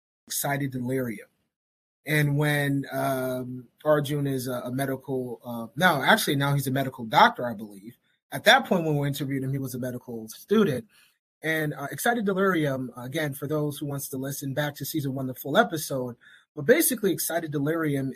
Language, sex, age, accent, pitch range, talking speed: English, male, 30-49, American, 130-160 Hz, 180 wpm